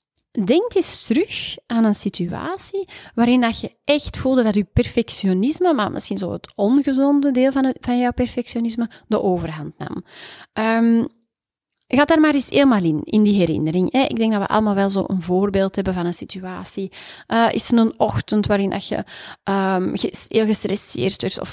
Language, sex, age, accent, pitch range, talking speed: Dutch, female, 30-49, Belgian, 195-270 Hz, 175 wpm